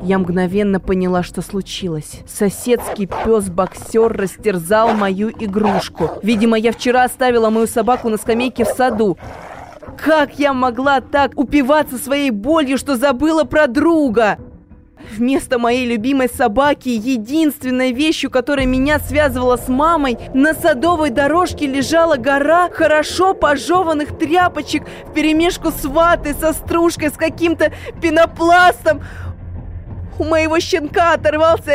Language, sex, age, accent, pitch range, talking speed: Russian, female, 20-39, native, 200-315 Hz, 120 wpm